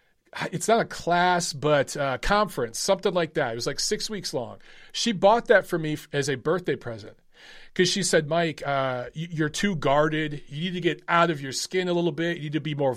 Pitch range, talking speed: 135-185 Hz, 225 wpm